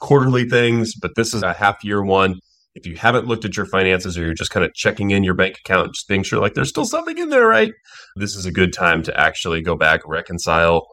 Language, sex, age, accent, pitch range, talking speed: English, male, 30-49, American, 90-120 Hz, 255 wpm